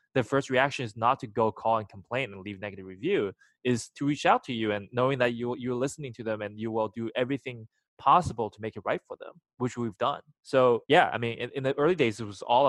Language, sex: English, male